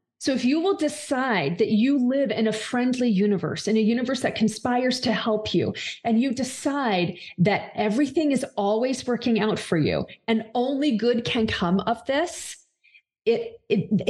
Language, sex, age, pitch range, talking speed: English, female, 30-49, 210-285 Hz, 170 wpm